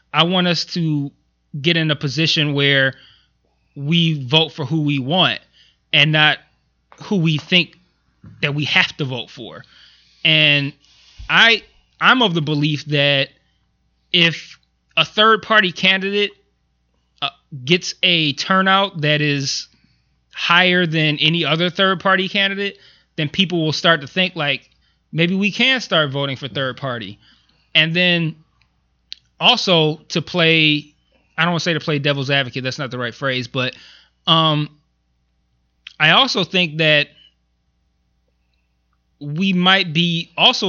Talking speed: 135 wpm